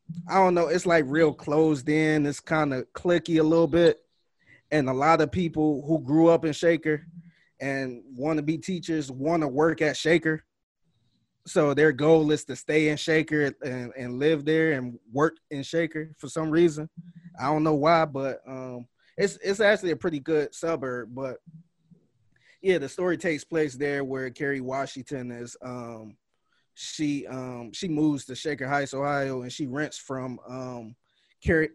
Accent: American